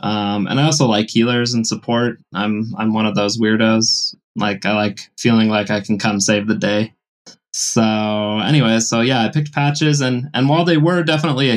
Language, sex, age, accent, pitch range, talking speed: English, male, 20-39, American, 105-125 Hz, 200 wpm